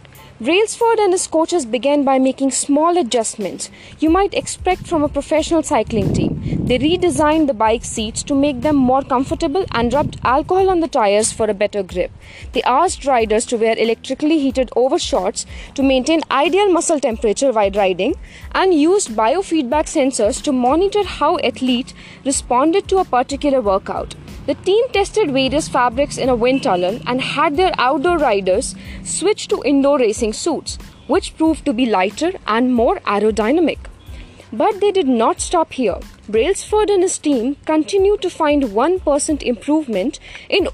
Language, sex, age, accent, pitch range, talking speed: Hindi, female, 20-39, native, 245-335 Hz, 160 wpm